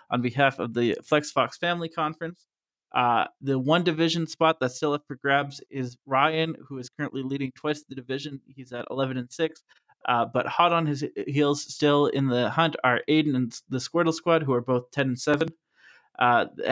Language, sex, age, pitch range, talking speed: English, male, 20-39, 130-155 Hz, 195 wpm